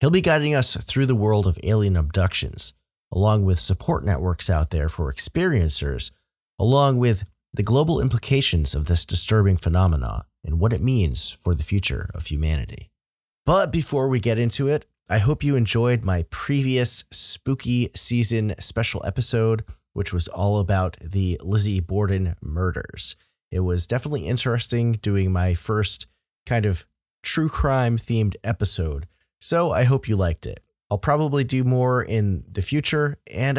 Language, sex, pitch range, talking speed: English, male, 90-125 Hz, 155 wpm